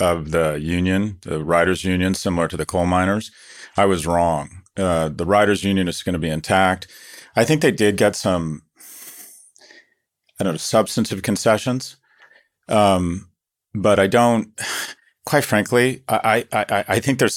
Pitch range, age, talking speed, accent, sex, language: 85-110 Hz, 40-59, 150 wpm, American, male, English